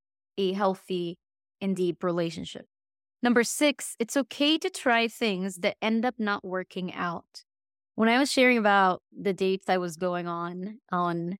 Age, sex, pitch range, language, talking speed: 20-39, female, 180-250 Hz, English, 160 wpm